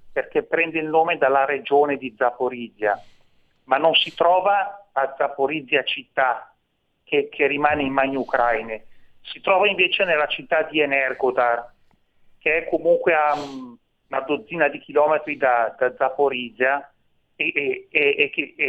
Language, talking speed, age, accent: Italian, 140 wpm, 40-59, native